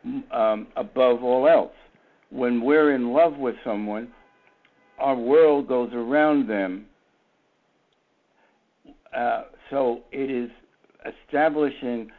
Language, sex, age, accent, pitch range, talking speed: English, male, 60-79, American, 110-135 Hz, 100 wpm